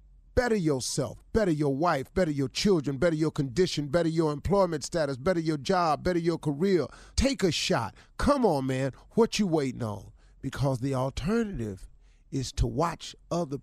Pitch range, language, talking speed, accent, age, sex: 125-175 Hz, English, 165 wpm, American, 40-59, male